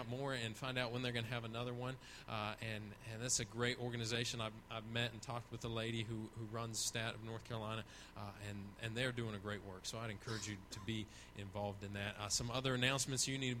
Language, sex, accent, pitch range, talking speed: English, male, American, 110-135 Hz, 250 wpm